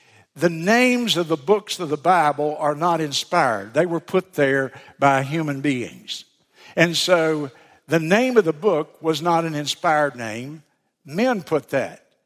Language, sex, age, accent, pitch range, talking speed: English, male, 60-79, American, 140-185 Hz, 160 wpm